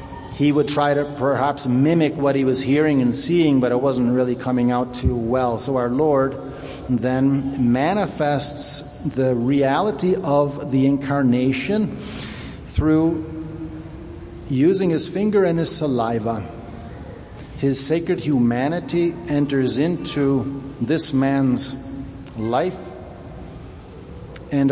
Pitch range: 130-150 Hz